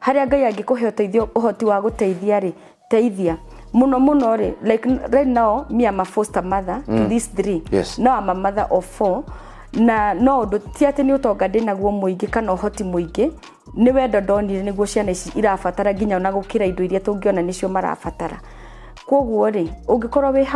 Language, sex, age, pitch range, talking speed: Swahili, female, 30-49, 190-245 Hz, 120 wpm